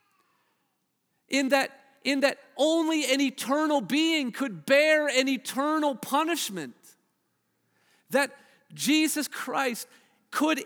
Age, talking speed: 40-59, 95 wpm